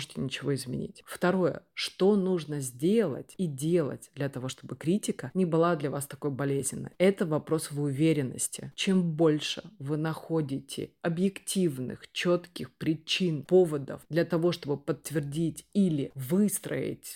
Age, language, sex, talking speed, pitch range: 30-49, Russian, female, 125 wpm, 150-185 Hz